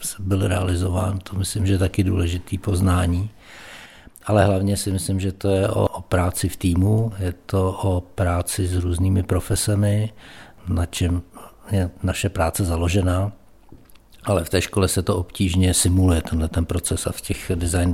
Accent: native